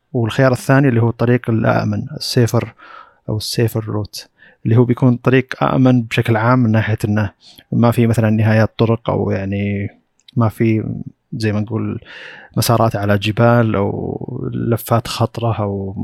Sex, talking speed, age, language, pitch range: male, 145 wpm, 30-49, Arabic, 105-120 Hz